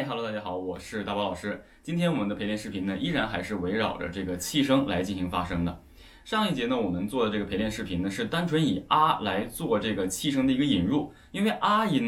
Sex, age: male, 20-39